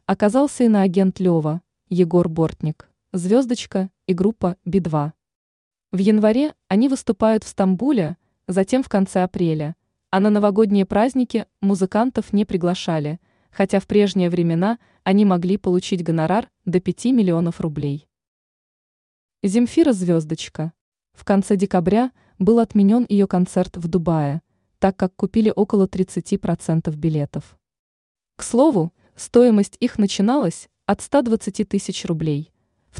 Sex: female